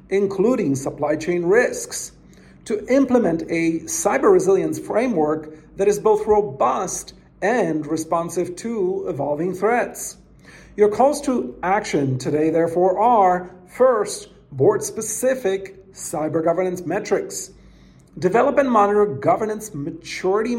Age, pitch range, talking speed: 50-69, 160-220 Hz, 105 wpm